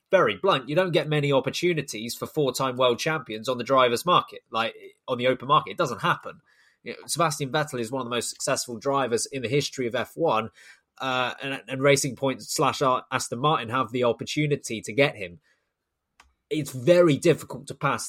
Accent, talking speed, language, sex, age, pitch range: British, 190 wpm, English, male, 20-39, 115-145 Hz